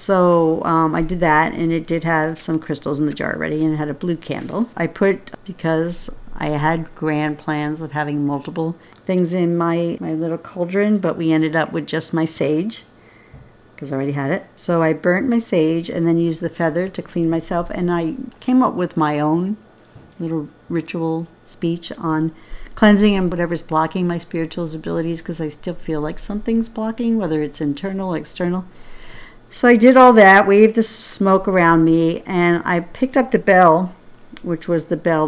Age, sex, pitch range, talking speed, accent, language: 50-69, female, 155-195 Hz, 190 wpm, American, English